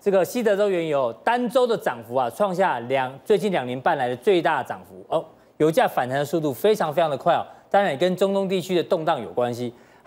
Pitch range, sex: 150-210 Hz, male